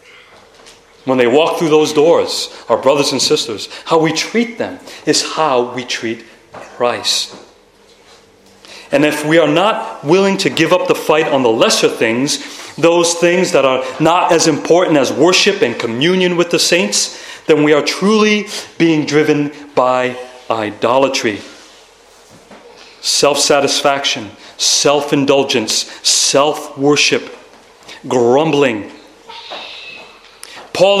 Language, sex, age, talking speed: English, male, 40-59, 125 wpm